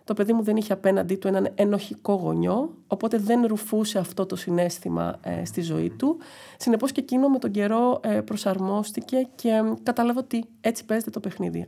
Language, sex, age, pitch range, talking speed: Greek, female, 30-49, 180-235 Hz, 185 wpm